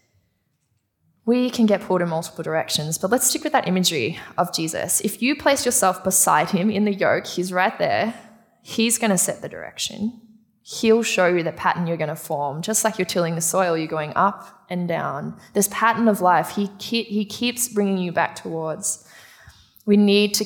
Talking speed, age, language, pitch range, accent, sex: 200 wpm, 20-39, English, 170-220 Hz, Australian, female